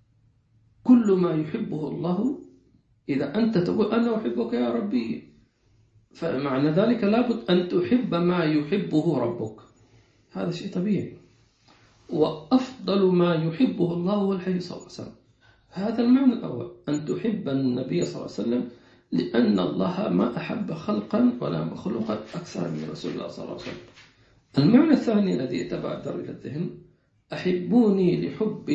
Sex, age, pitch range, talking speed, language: male, 50-69, 120-200 Hz, 130 wpm, English